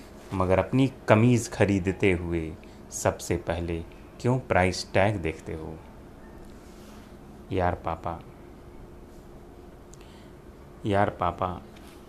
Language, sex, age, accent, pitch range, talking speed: Hindi, male, 30-49, native, 85-110 Hz, 80 wpm